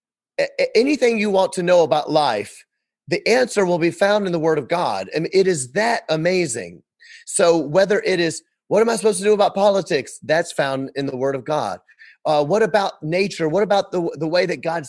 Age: 30-49